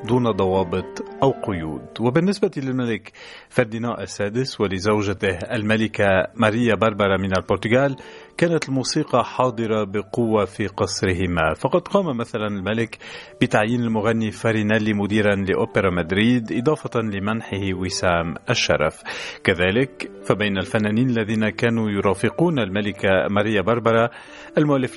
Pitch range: 100-125 Hz